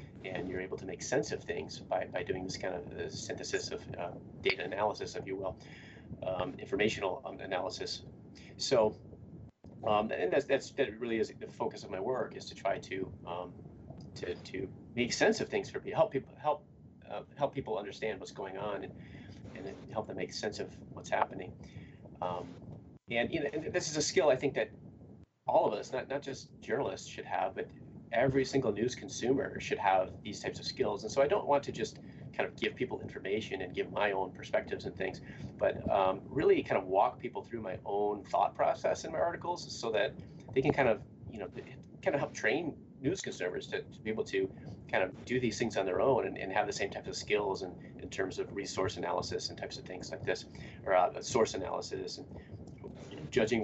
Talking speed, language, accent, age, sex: 210 wpm, English, American, 30-49, male